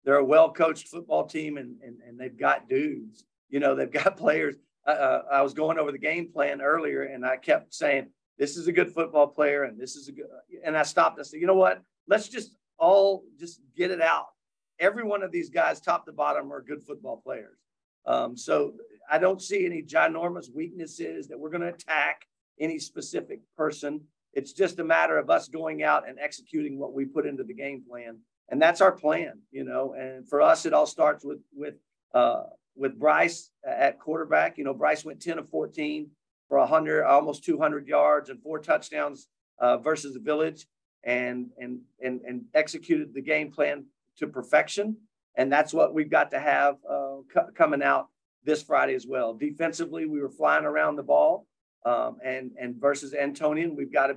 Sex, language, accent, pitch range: male, English, American, 140-195 Hz